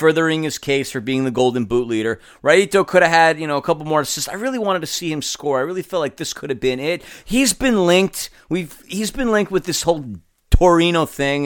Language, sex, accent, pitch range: English, male, American, 160-215 Hz